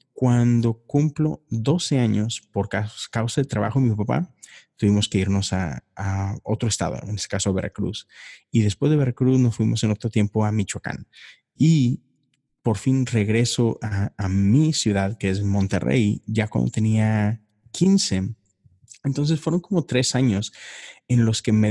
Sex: male